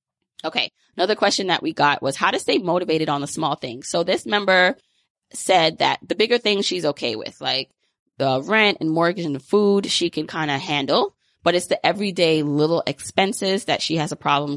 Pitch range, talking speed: 150-180 Hz, 205 wpm